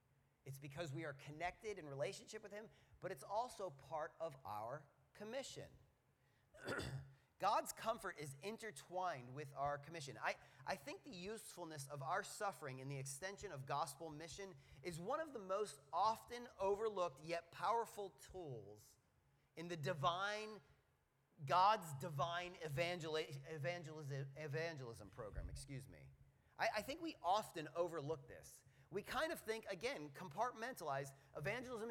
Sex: male